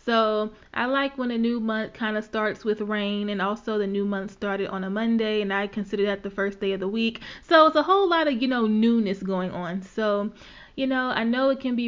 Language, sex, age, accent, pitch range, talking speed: English, female, 30-49, American, 200-230 Hz, 255 wpm